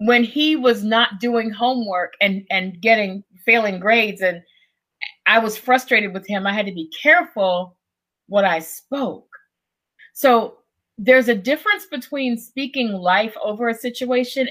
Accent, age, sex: American, 30-49, female